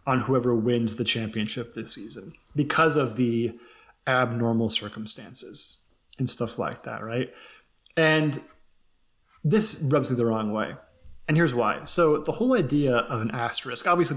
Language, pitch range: English, 115-130 Hz